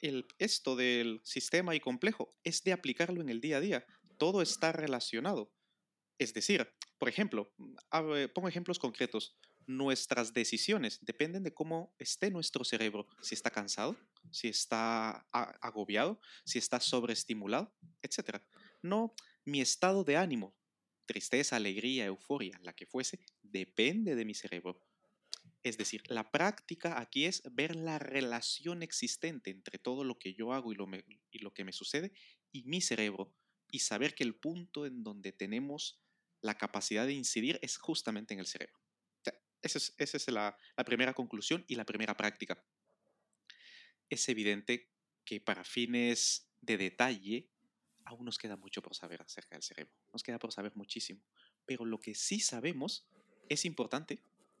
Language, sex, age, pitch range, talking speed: Spanish, male, 30-49, 110-165 Hz, 155 wpm